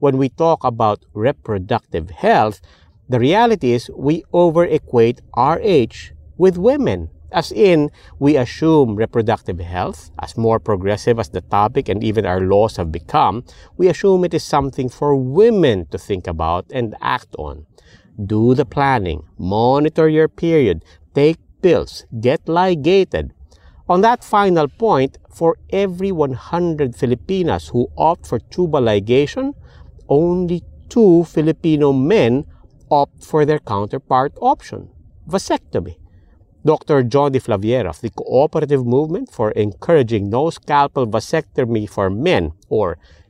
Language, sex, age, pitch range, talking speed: English, male, 50-69, 105-160 Hz, 130 wpm